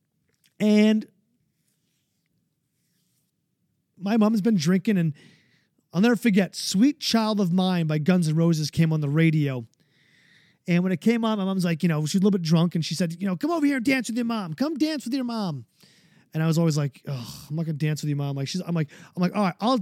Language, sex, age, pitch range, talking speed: English, male, 30-49, 165-210 Hz, 230 wpm